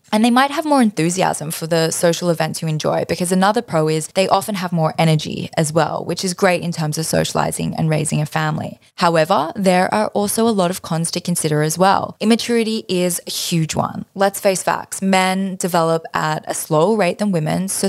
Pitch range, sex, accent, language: 160-195 Hz, female, Australian, English